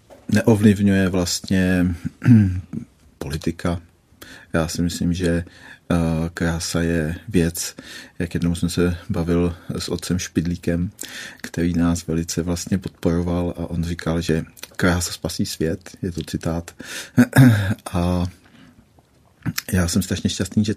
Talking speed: 115 wpm